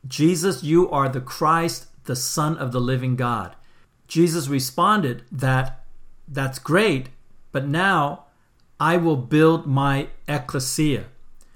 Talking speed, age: 120 wpm, 50-69